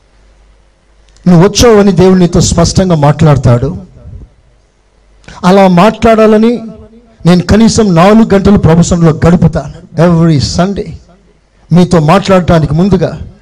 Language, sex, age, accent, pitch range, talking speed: Telugu, male, 50-69, native, 160-225 Hz, 85 wpm